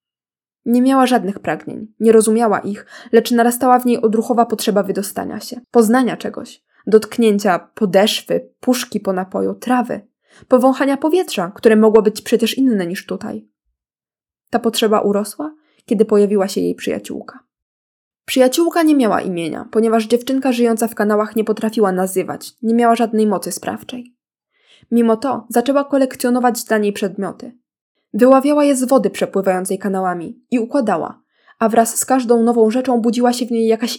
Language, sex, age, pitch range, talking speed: Polish, female, 20-39, 205-245 Hz, 145 wpm